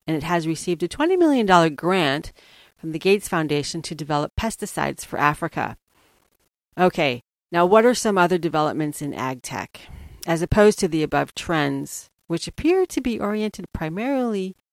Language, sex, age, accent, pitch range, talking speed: English, female, 40-59, American, 155-210 Hz, 160 wpm